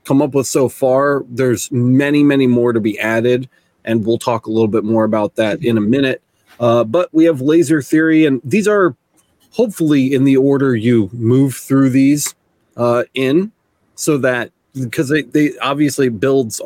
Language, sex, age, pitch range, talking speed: English, male, 30-49, 120-150 Hz, 175 wpm